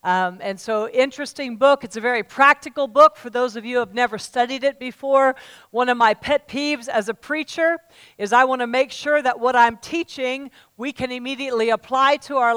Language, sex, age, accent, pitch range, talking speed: English, female, 50-69, American, 240-290 Hz, 205 wpm